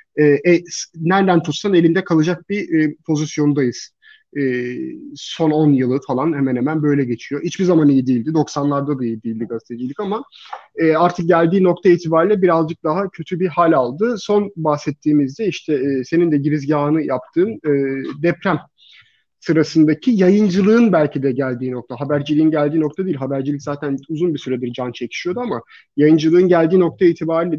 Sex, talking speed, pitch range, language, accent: male, 150 wpm, 145-190 Hz, Turkish, native